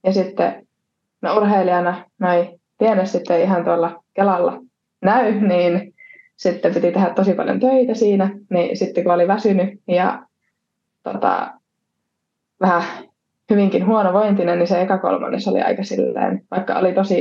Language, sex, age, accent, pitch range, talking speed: Finnish, female, 20-39, native, 180-220 Hz, 140 wpm